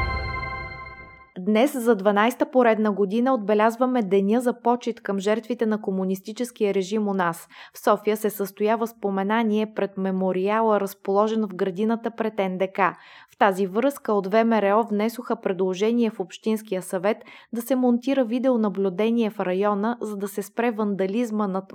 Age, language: 20-39, Bulgarian